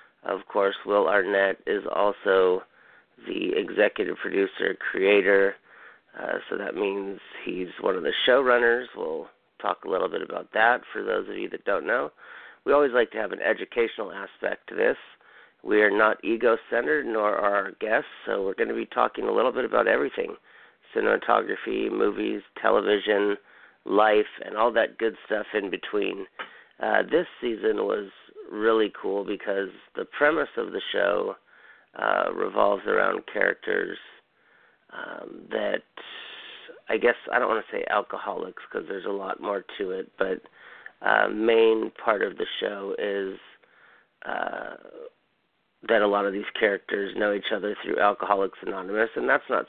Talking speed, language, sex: 155 wpm, English, male